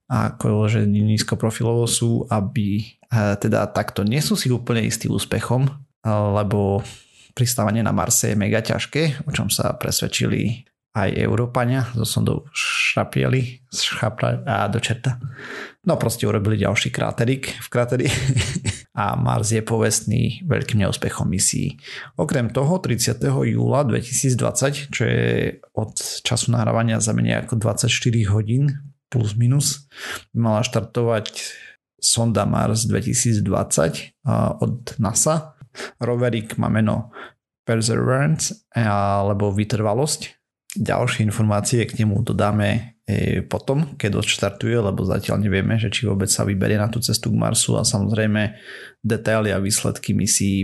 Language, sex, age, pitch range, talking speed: Slovak, male, 30-49, 105-125 Hz, 115 wpm